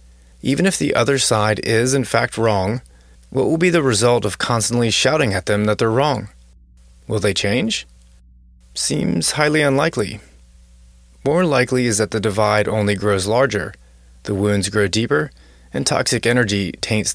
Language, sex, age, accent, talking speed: English, male, 30-49, American, 155 wpm